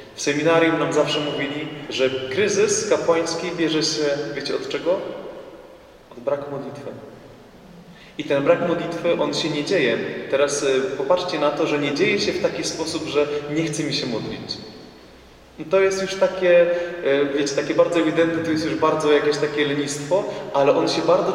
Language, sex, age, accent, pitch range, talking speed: Polish, male, 20-39, native, 140-190 Hz, 170 wpm